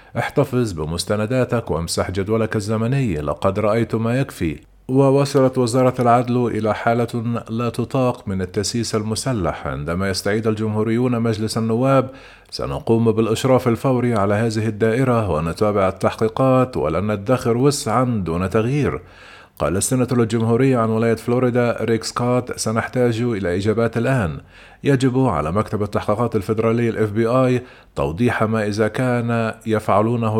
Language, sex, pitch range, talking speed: Arabic, male, 105-120 Hz, 120 wpm